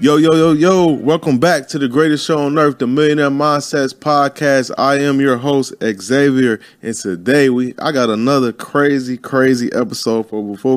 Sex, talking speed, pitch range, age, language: male, 180 wpm, 120-145 Hz, 20-39, English